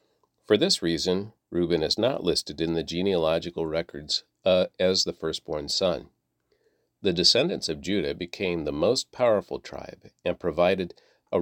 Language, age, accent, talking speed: English, 40-59, American, 145 wpm